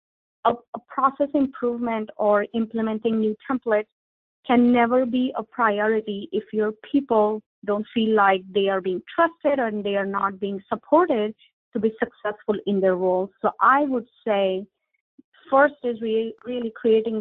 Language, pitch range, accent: English, 200-240 Hz, Indian